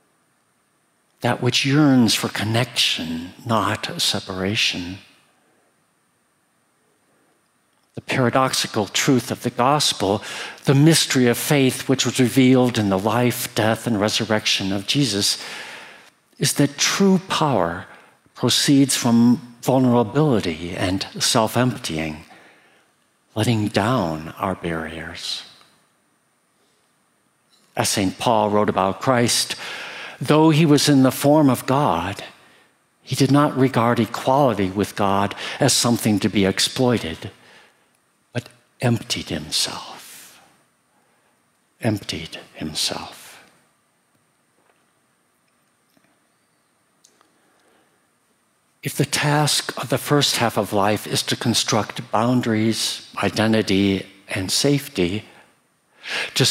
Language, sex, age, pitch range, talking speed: English, male, 60-79, 100-130 Hz, 95 wpm